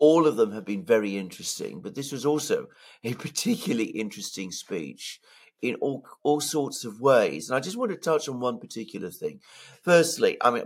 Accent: British